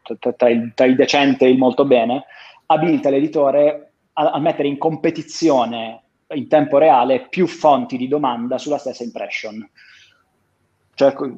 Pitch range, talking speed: 125-160 Hz, 130 wpm